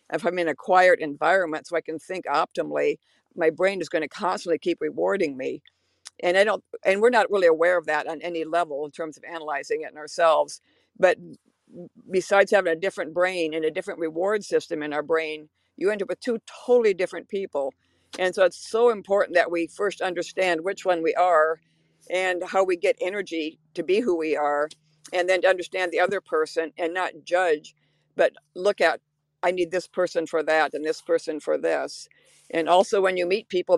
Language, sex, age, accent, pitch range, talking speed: English, female, 60-79, American, 160-200 Hz, 205 wpm